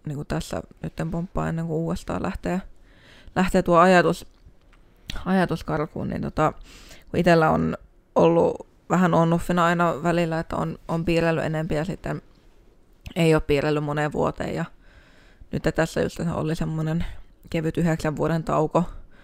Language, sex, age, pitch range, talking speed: Finnish, female, 20-39, 155-170 Hz, 135 wpm